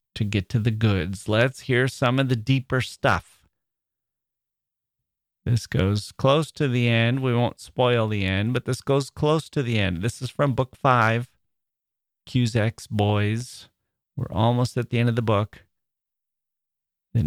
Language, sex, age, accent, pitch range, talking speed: English, male, 30-49, American, 95-120 Hz, 160 wpm